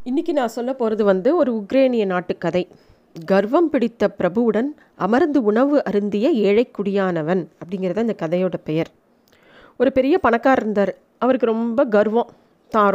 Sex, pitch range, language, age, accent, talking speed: female, 200-255 Hz, Tamil, 30-49, native, 130 wpm